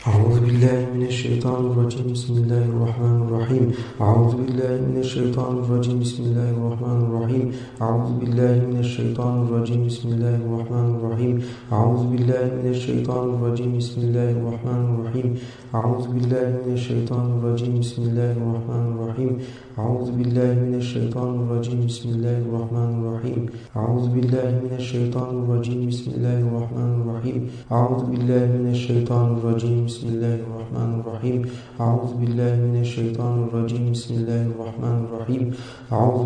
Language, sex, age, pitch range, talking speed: Turkish, male, 50-69, 115-125 Hz, 45 wpm